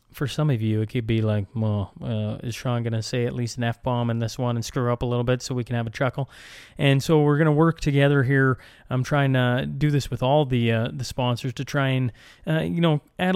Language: English